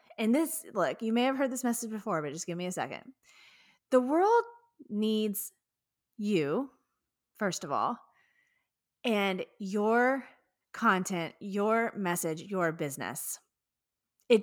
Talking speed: 130 wpm